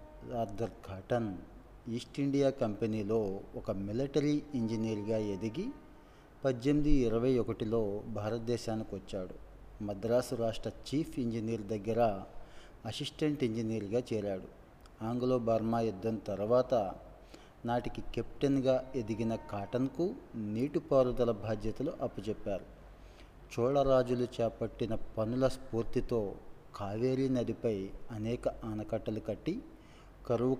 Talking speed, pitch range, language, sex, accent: 80 wpm, 110-125 Hz, Telugu, male, native